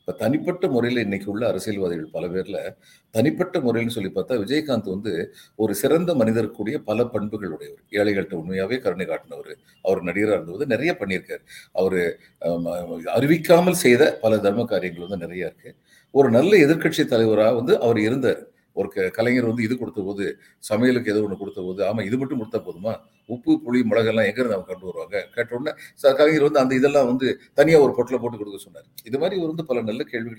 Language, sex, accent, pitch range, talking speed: Tamil, male, native, 105-150 Hz, 170 wpm